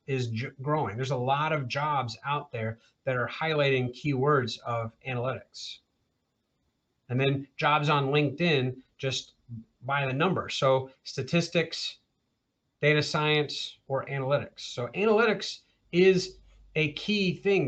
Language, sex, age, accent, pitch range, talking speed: English, male, 30-49, American, 135-165 Hz, 120 wpm